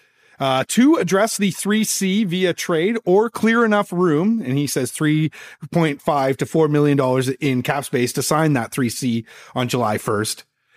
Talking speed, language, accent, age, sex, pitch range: 155 wpm, English, American, 30-49, male, 125-175 Hz